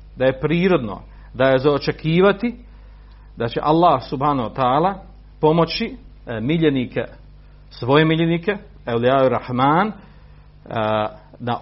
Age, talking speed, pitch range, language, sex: 50-69, 100 wpm, 120-160 Hz, Croatian, male